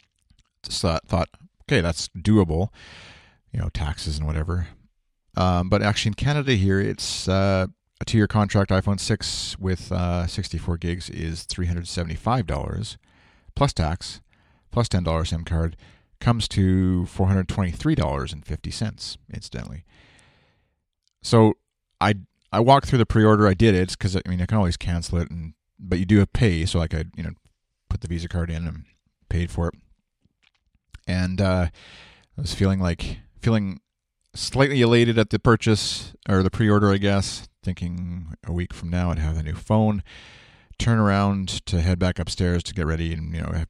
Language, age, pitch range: English, 40-59, 85-105 Hz